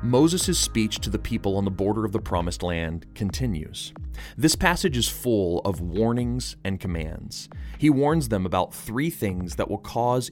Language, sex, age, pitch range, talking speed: English, male, 30-49, 95-125 Hz, 175 wpm